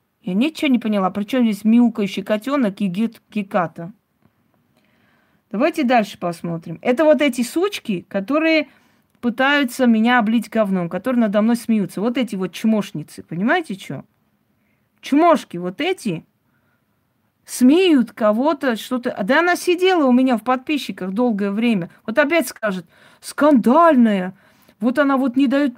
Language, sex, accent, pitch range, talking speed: Russian, female, native, 205-270 Hz, 135 wpm